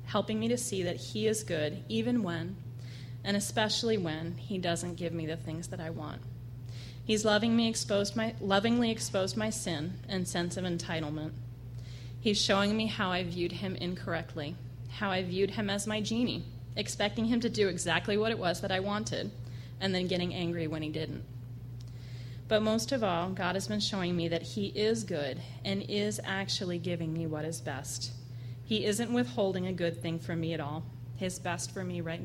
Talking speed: 185 wpm